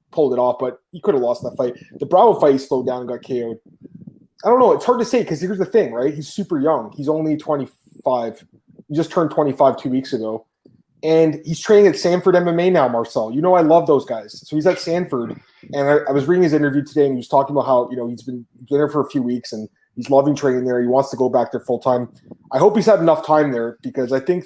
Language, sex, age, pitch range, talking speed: English, male, 20-39, 130-180 Hz, 265 wpm